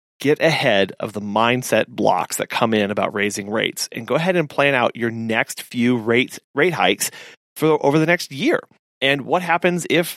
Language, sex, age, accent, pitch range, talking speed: English, male, 30-49, American, 120-155 Hz, 195 wpm